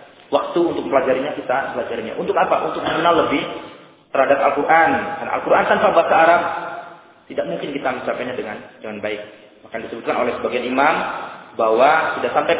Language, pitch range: Malay, 135-195 Hz